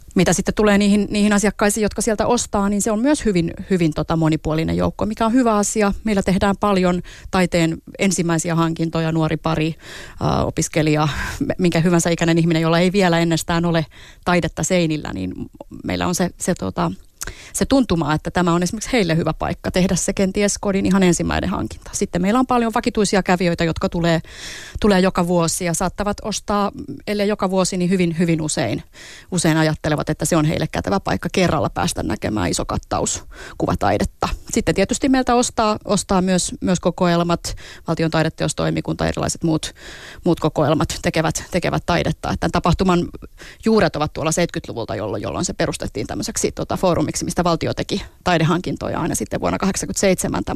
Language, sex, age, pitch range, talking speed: Finnish, female, 30-49, 160-200 Hz, 160 wpm